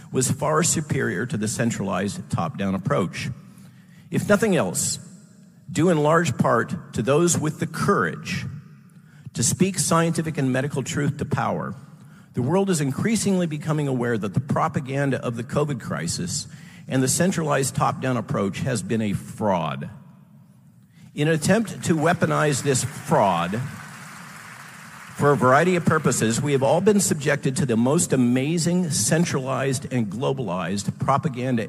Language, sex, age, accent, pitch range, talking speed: English, male, 50-69, American, 130-175 Hz, 140 wpm